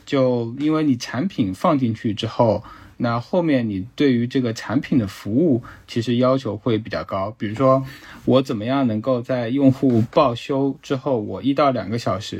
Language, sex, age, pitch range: Chinese, male, 20-39, 105-130 Hz